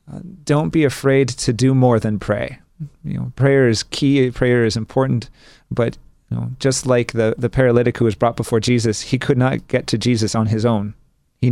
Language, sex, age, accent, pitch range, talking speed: English, male, 30-49, American, 110-135 Hz, 210 wpm